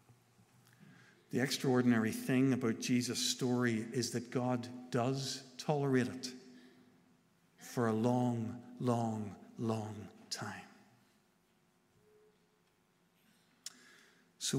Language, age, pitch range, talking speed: English, 50-69, 120-145 Hz, 80 wpm